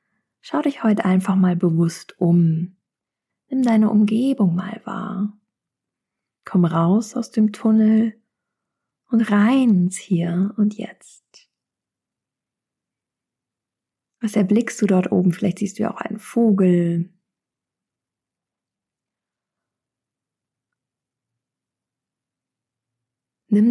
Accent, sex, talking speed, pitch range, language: German, female, 90 wpm, 185-225 Hz, German